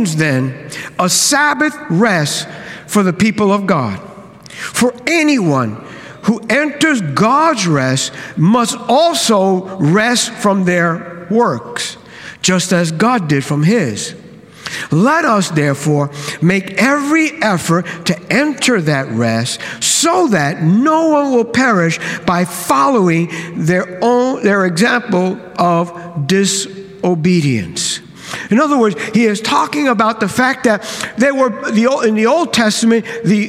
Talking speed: 125 wpm